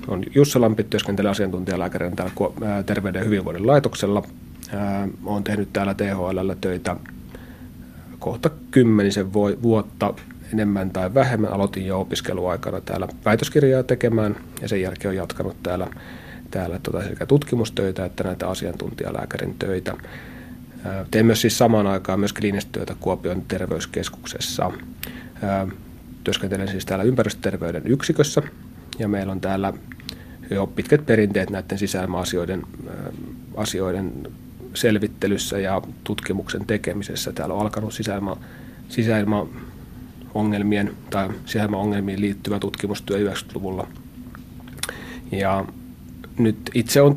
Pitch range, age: 95-110 Hz, 30-49